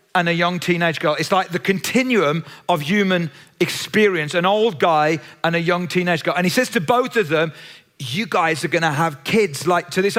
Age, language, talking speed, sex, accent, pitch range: 40-59, English, 220 wpm, male, British, 165-200 Hz